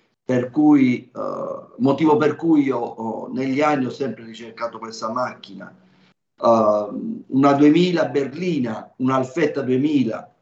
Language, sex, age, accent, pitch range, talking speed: Italian, male, 50-69, native, 115-140 Hz, 125 wpm